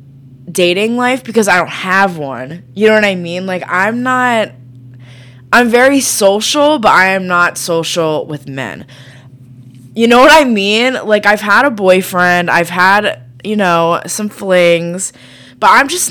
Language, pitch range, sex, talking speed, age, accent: English, 135-220 Hz, female, 165 wpm, 20-39, American